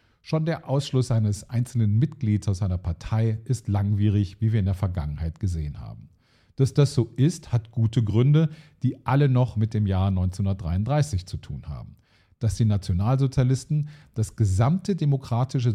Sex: male